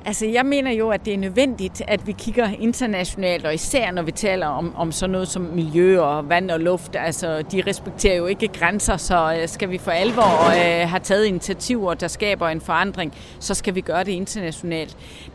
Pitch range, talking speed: 170-205 Hz, 200 wpm